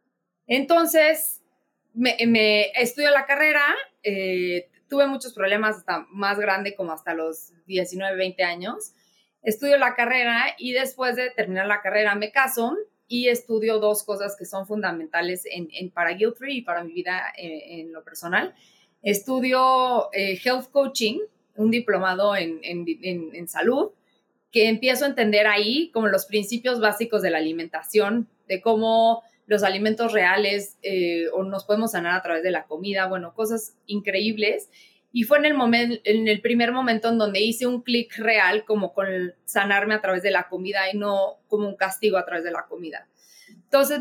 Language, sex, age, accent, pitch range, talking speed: Spanish, female, 20-39, Mexican, 190-240 Hz, 170 wpm